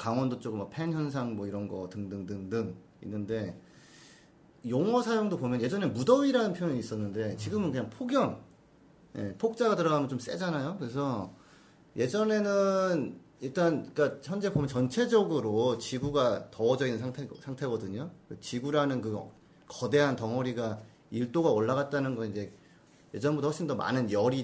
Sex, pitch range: male, 110-165 Hz